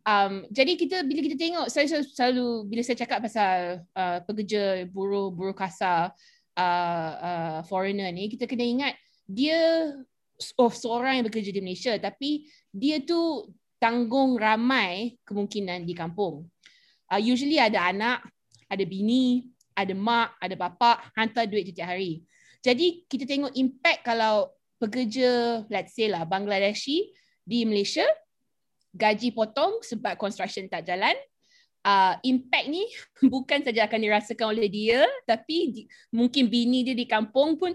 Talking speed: 140 wpm